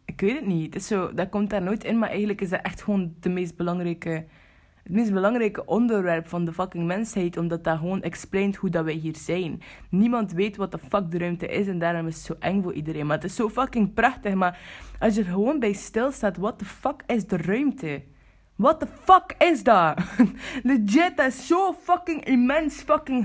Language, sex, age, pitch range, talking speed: Dutch, female, 20-39, 170-230 Hz, 220 wpm